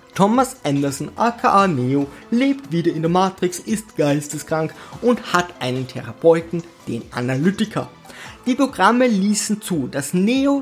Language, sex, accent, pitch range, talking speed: German, male, German, 160-235 Hz, 130 wpm